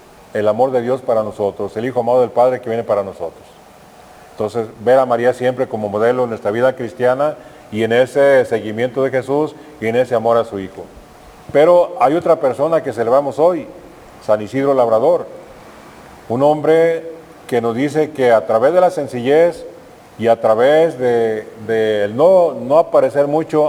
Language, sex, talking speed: Spanish, male, 175 wpm